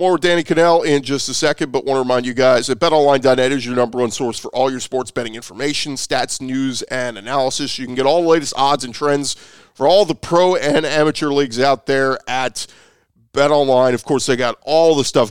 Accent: American